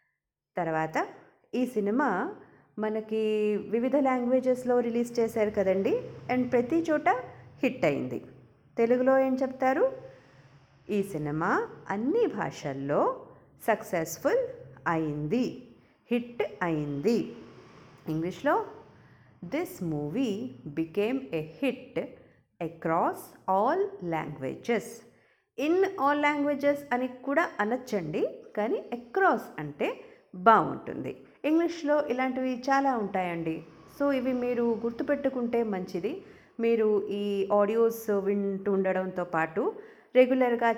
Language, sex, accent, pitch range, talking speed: Telugu, female, native, 195-275 Hz, 90 wpm